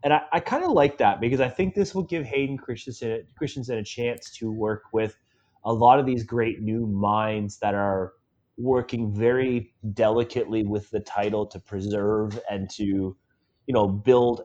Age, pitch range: 30-49, 105-135 Hz